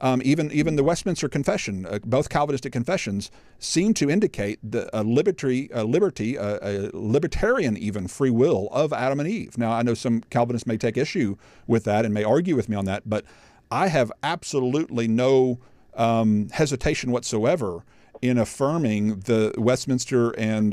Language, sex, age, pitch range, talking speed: English, male, 50-69, 105-125 Hz, 170 wpm